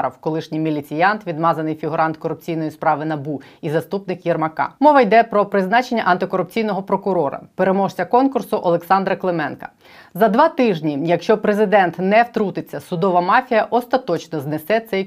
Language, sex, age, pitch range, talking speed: Ukrainian, female, 20-39, 165-210 Hz, 125 wpm